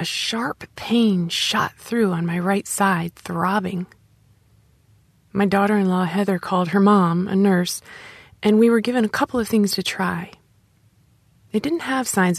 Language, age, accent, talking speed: English, 30-49, American, 155 wpm